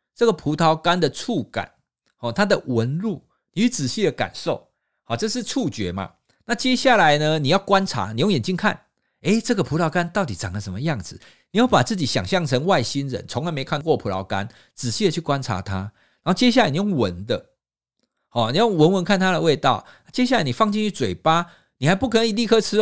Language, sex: Chinese, male